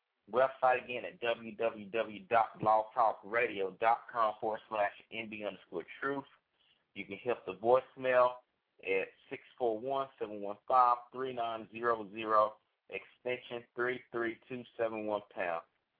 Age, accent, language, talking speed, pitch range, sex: 20-39, American, English, 80 wpm, 110-125 Hz, male